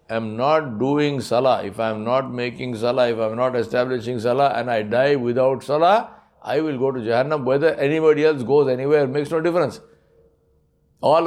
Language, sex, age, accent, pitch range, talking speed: English, male, 60-79, Indian, 110-145 Hz, 175 wpm